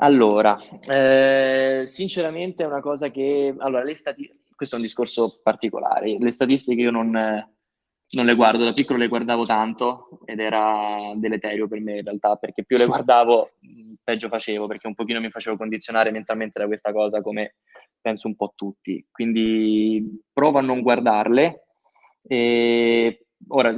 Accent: native